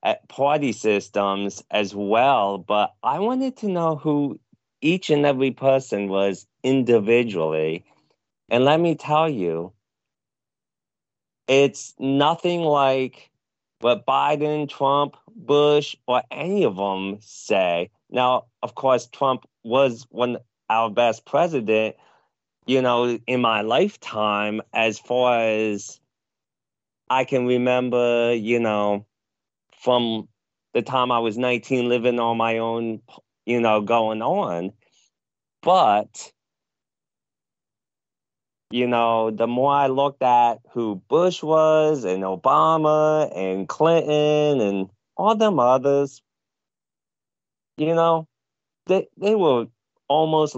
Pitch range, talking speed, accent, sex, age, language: 110-145 Hz, 115 wpm, American, male, 30-49, English